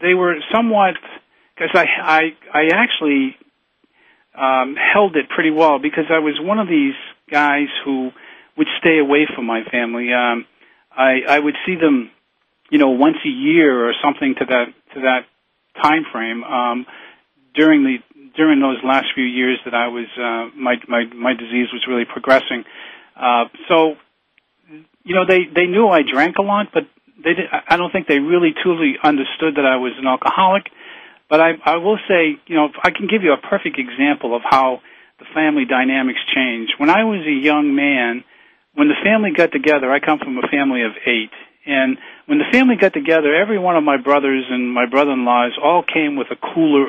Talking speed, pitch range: 190 wpm, 125-180 Hz